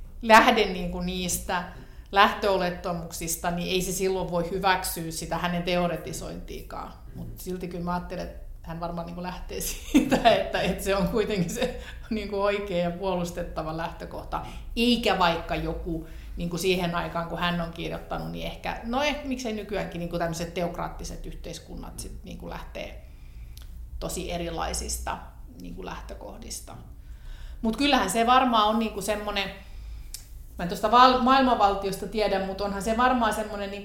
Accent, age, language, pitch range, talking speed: native, 30-49, Finnish, 170-200 Hz, 120 wpm